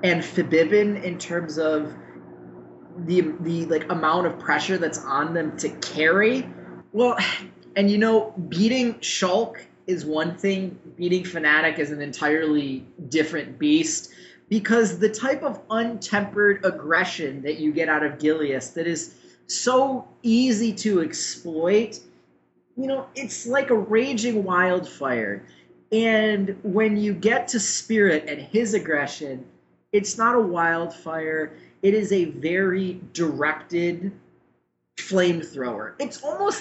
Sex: male